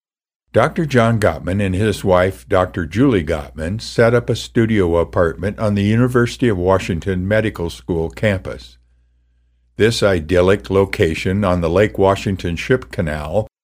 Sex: male